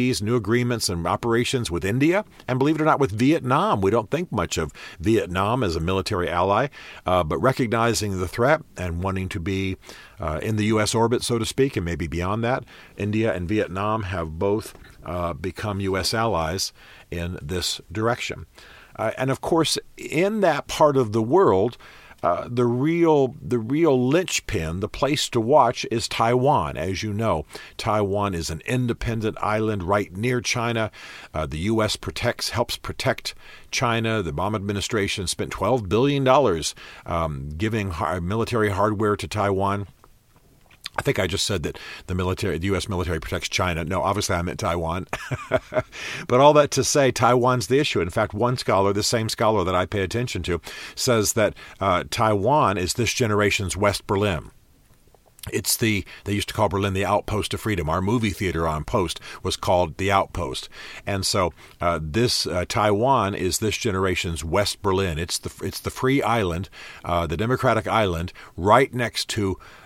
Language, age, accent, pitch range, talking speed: English, 50-69, American, 90-120 Hz, 170 wpm